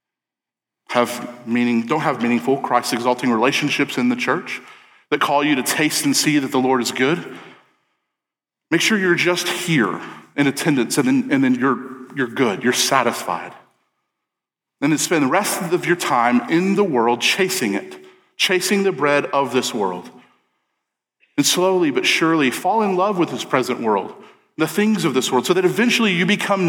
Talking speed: 175 wpm